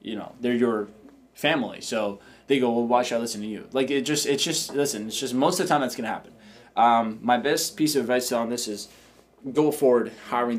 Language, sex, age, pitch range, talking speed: English, male, 20-39, 120-150 Hz, 240 wpm